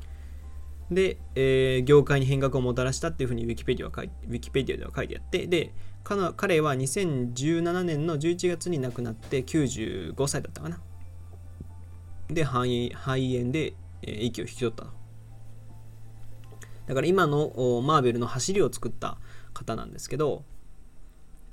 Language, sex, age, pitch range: Japanese, male, 20-39, 105-140 Hz